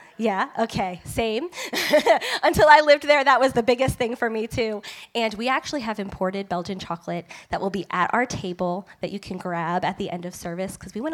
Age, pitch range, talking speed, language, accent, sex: 10-29, 180-225 Hz, 215 wpm, English, American, female